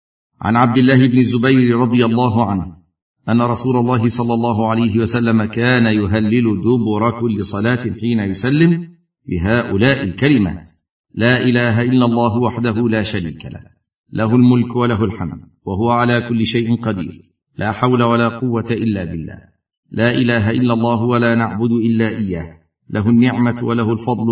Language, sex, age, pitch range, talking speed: Arabic, male, 50-69, 105-125 Hz, 145 wpm